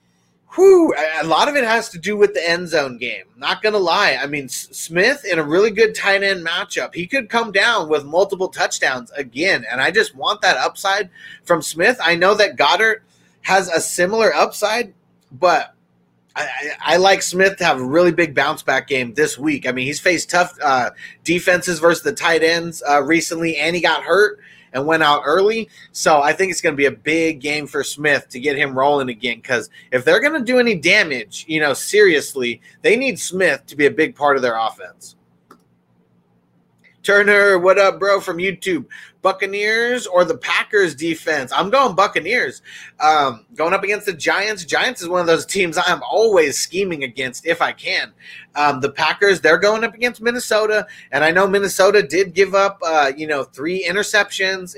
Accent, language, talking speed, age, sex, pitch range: American, English, 195 wpm, 30-49, male, 150-200 Hz